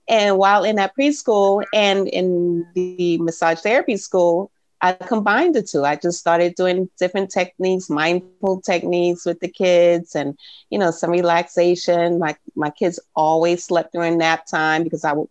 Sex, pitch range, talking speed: female, 160-195 Hz, 165 wpm